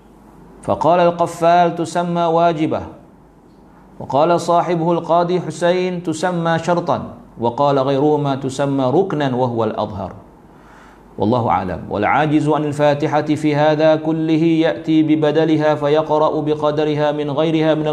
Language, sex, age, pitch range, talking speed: Malay, male, 50-69, 130-165 Hz, 105 wpm